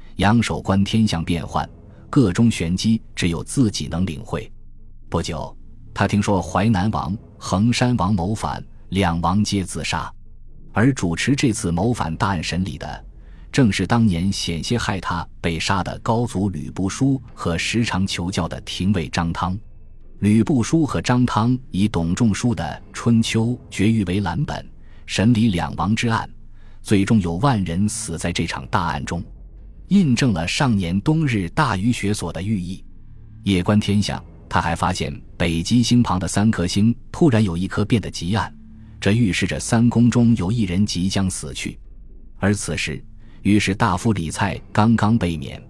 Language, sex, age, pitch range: Chinese, male, 20-39, 85-115 Hz